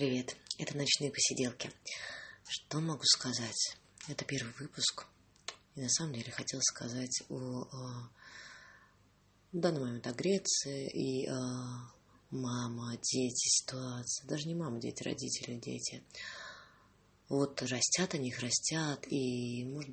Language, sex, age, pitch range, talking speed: English, female, 20-39, 120-145 Hz, 125 wpm